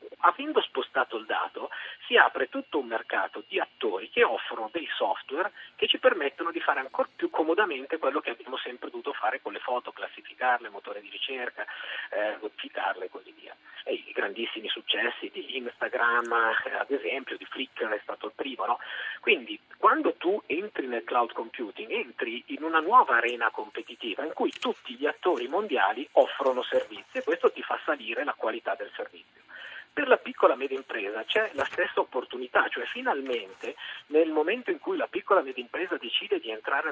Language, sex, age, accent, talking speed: Italian, male, 40-59, native, 180 wpm